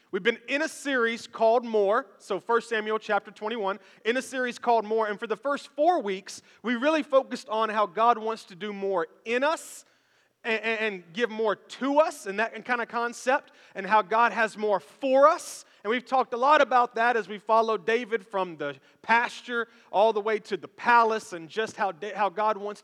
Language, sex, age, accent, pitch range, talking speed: English, male, 30-49, American, 185-235 Hz, 210 wpm